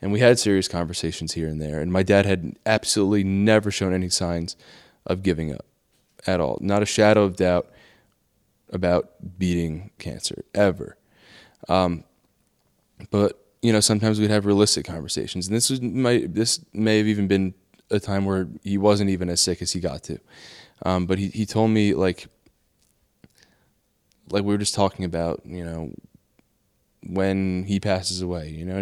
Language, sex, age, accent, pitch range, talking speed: English, male, 10-29, American, 90-105 Hz, 165 wpm